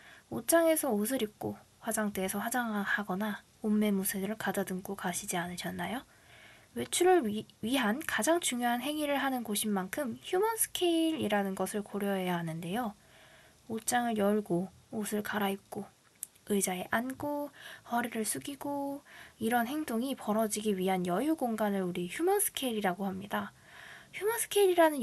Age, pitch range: 20-39, 195-275 Hz